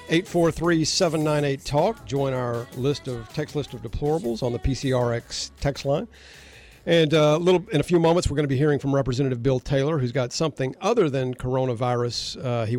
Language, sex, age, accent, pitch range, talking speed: English, male, 50-69, American, 130-155 Hz, 205 wpm